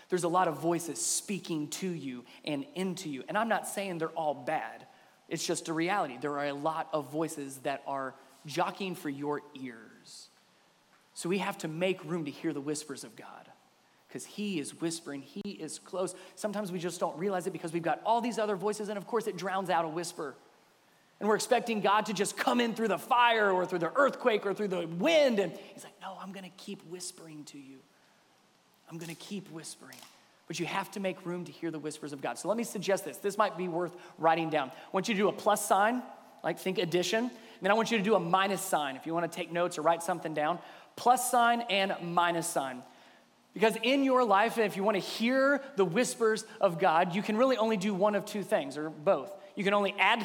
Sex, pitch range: male, 165-210 Hz